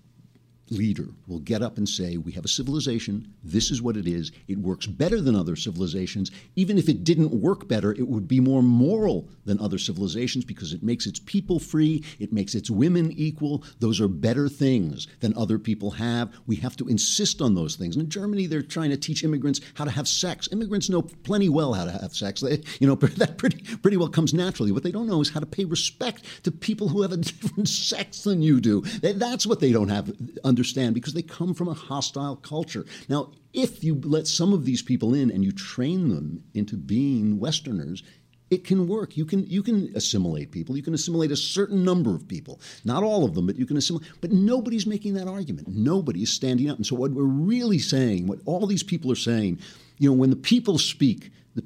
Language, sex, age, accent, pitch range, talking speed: English, male, 60-79, American, 115-185 Hz, 220 wpm